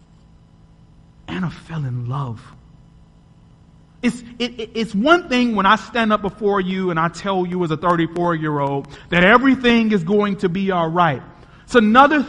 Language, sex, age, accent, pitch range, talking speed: English, male, 30-49, American, 160-235 Hz, 155 wpm